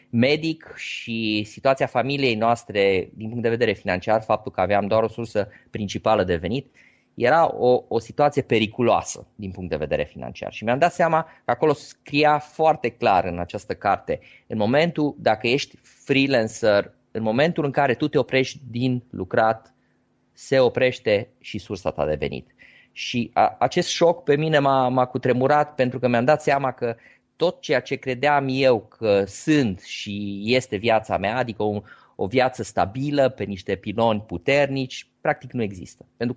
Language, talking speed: Romanian, 165 wpm